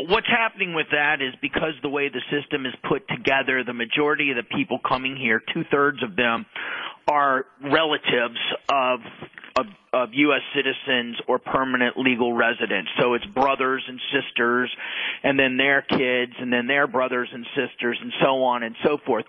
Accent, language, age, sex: American, English, 40-59, male